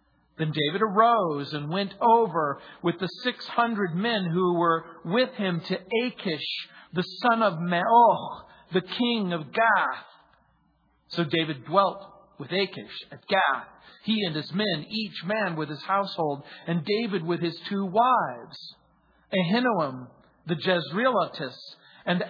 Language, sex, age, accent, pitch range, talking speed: English, male, 50-69, American, 160-215 Hz, 135 wpm